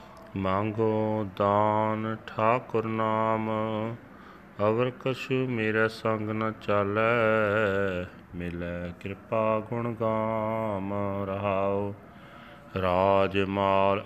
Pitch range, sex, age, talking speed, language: 100-110 Hz, male, 30-49, 65 wpm, Punjabi